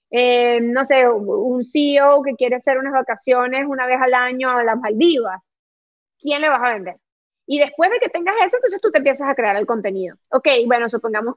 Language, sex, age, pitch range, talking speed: Spanish, female, 20-39, 235-280 Hz, 205 wpm